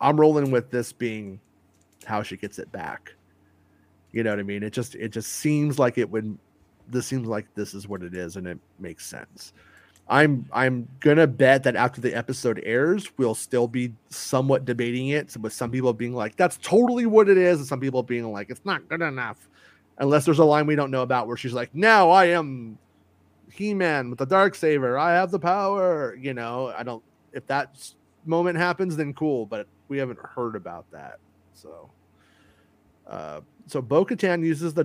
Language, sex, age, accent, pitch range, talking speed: English, male, 30-49, American, 100-140 Hz, 205 wpm